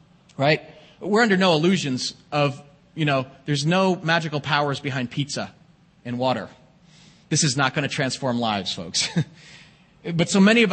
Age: 30-49